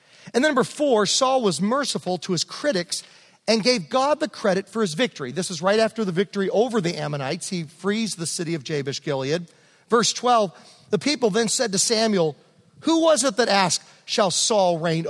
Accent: American